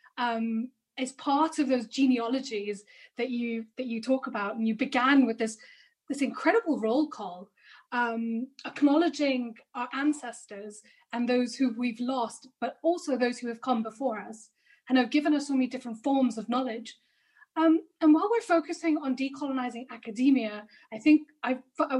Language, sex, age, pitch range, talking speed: English, female, 10-29, 225-285 Hz, 165 wpm